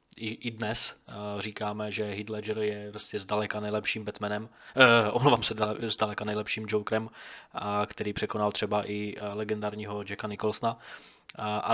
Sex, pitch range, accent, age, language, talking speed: male, 105-110 Hz, native, 20-39, Czech, 130 wpm